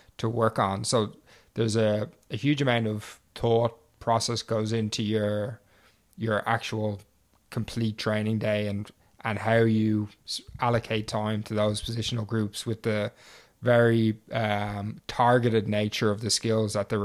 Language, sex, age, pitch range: English, male, 20-39, 105-110 Hz